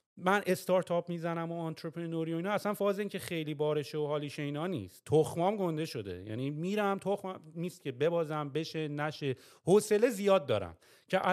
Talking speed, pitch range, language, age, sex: 170 wpm, 130-165 Hz, English, 30-49, male